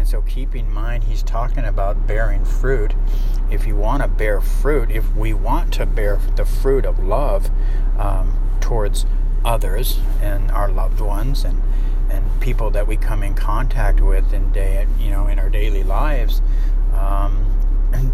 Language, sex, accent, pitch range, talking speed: English, male, American, 100-110 Hz, 165 wpm